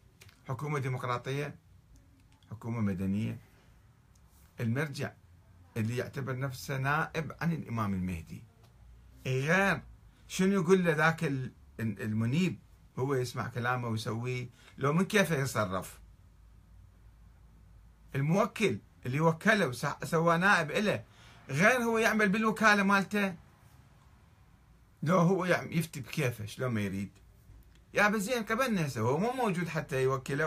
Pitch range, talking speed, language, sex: 110-175 Hz, 105 wpm, Arabic, male